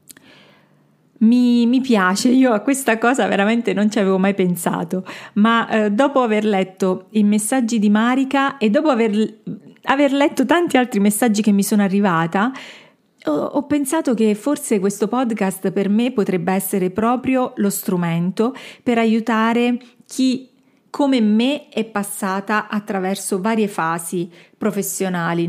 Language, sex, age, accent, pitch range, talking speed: Italian, female, 40-59, native, 195-245 Hz, 140 wpm